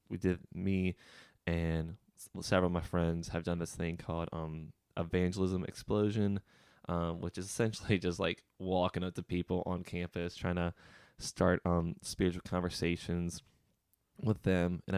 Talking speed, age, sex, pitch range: 150 wpm, 20-39, male, 85-95 Hz